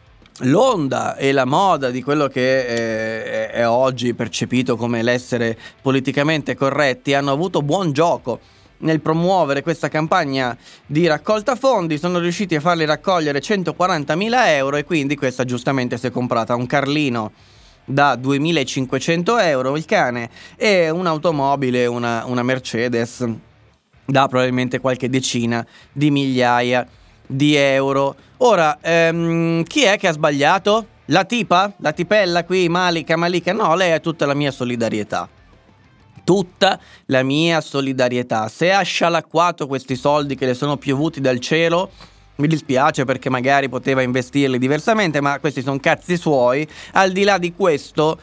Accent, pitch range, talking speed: native, 125-160 Hz, 140 wpm